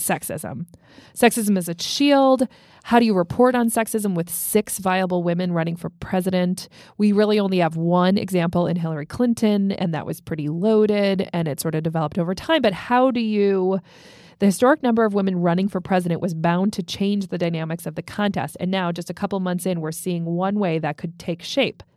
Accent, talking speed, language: American, 205 wpm, English